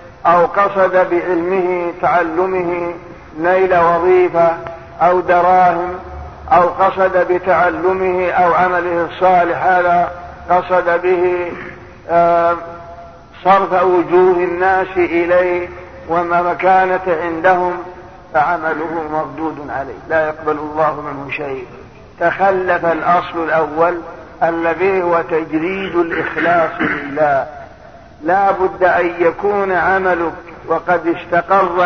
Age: 50-69